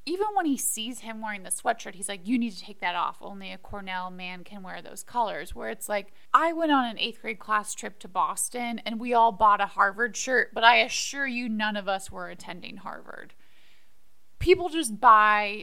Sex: female